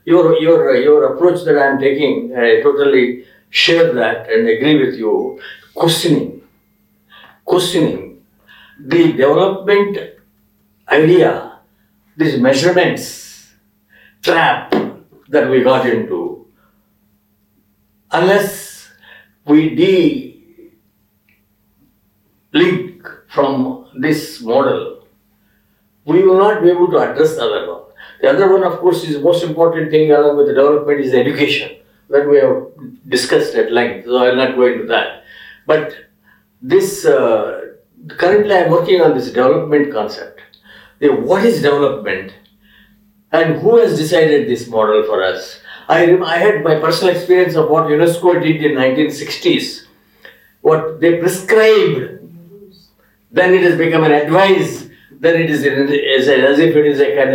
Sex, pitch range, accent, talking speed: male, 140-210 Hz, Indian, 130 wpm